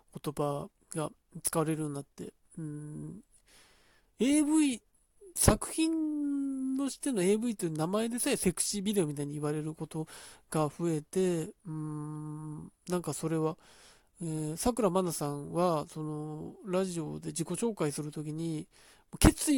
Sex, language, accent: male, Japanese, native